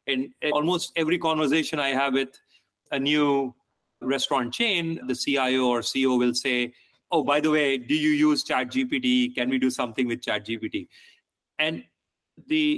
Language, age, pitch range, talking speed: English, 30-49, 130-165 Hz, 155 wpm